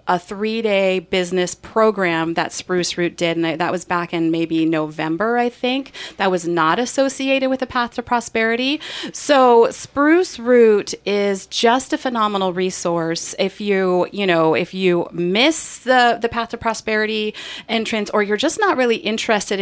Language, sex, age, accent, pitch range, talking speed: English, female, 30-49, American, 185-245 Hz, 160 wpm